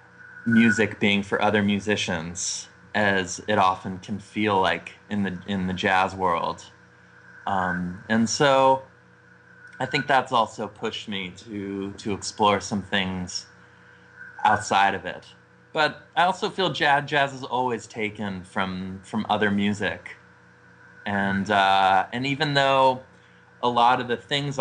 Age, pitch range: 20-39, 95-115 Hz